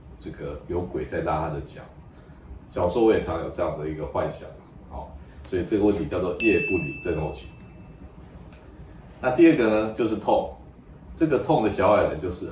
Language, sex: Chinese, male